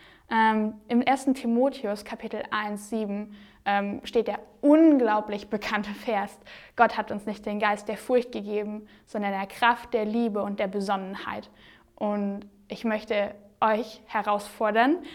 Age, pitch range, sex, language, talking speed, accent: 10-29, 210-240 Hz, female, German, 135 wpm, German